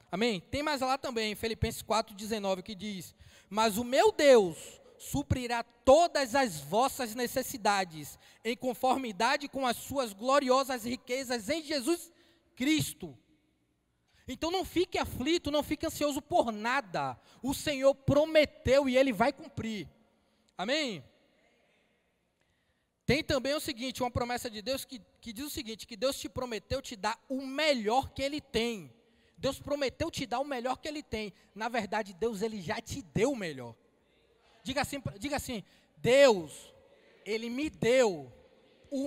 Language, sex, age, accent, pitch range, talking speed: Portuguese, male, 20-39, Brazilian, 220-290 Hz, 145 wpm